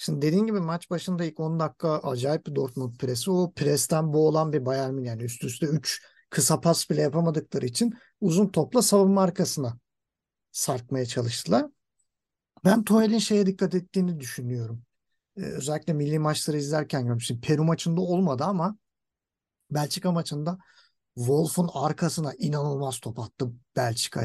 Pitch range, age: 140-185 Hz, 50-69